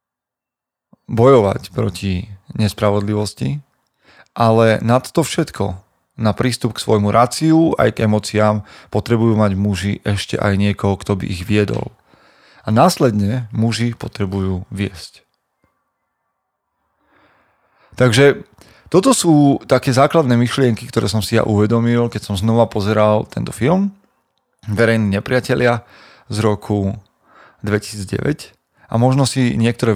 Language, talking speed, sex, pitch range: Slovak, 110 wpm, male, 100-120 Hz